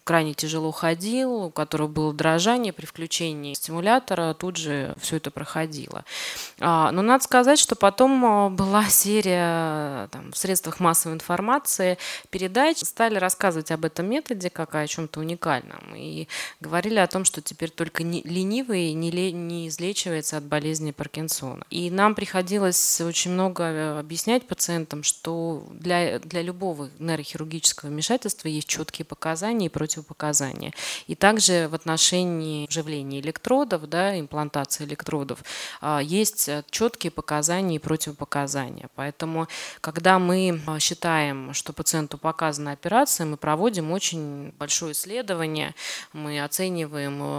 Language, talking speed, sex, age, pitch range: Russian, 125 wpm, female, 20-39, 150-185 Hz